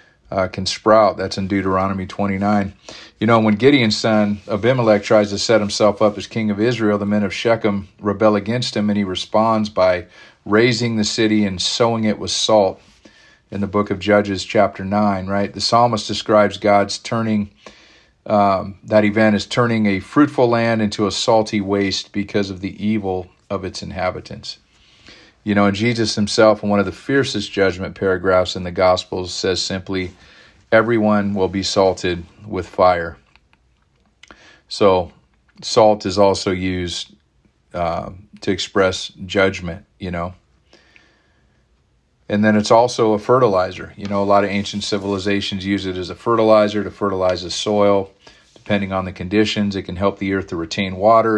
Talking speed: 165 wpm